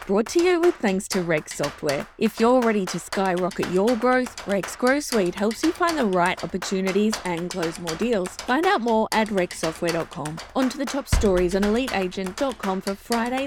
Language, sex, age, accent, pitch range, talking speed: English, female, 20-39, Australian, 185-250 Hz, 185 wpm